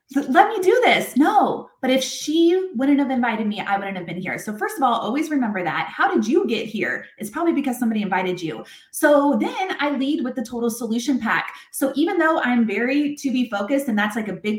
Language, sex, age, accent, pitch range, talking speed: English, female, 20-39, American, 230-320 Hz, 235 wpm